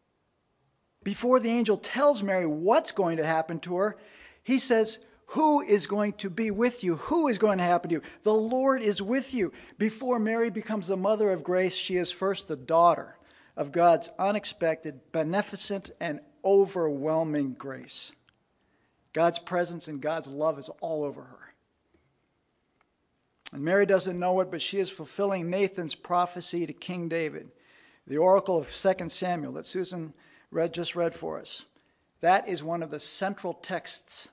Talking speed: 160 wpm